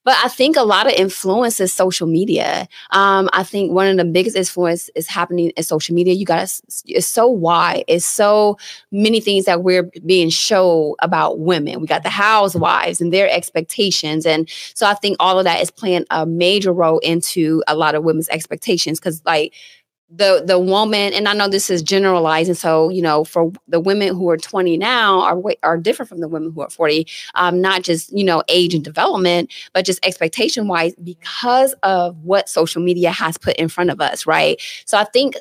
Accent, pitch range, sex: American, 170-195 Hz, female